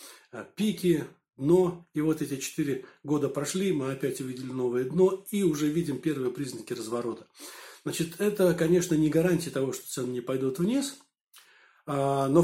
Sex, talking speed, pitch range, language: male, 150 wpm, 140-175 Hz, Turkish